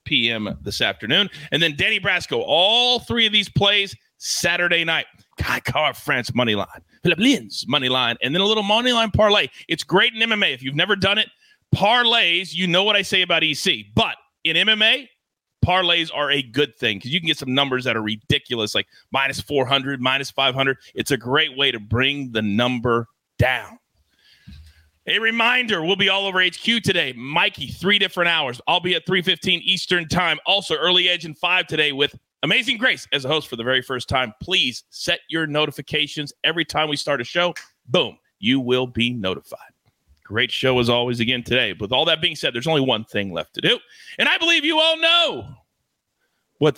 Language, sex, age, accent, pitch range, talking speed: English, male, 30-49, American, 130-195 Hz, 200 wpm